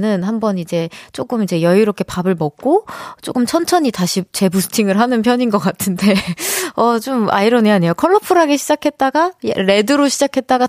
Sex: female